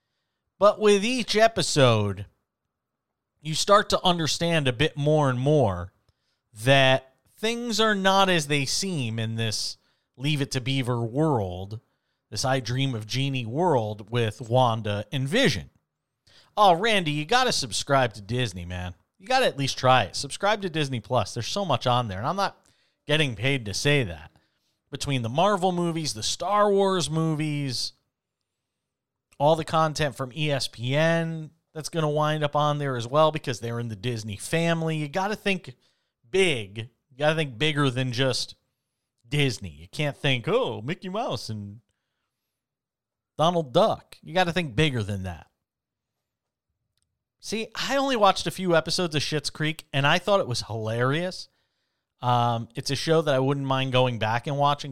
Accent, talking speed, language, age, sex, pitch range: American, 165 wpm, English, 40-59, male, 115-160 Hz